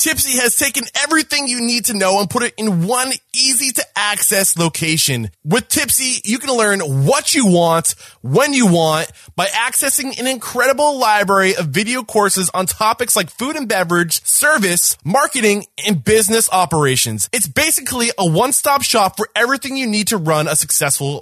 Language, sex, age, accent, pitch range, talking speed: English, male, 20-39, American, 175-250 Hz, 170 wpm